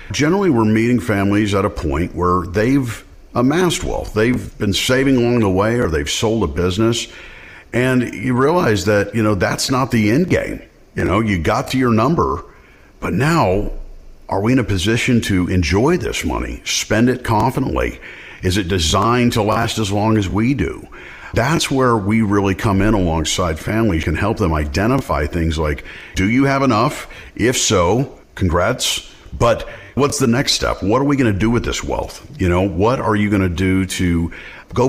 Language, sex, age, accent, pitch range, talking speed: English, male, 50-69, American, 90-115 Hz, 185 wpm